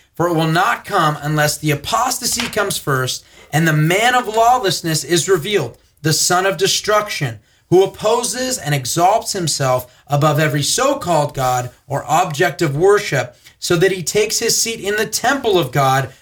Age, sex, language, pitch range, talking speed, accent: 30-49, male, English, 140-205 Hz, 165 wpm, American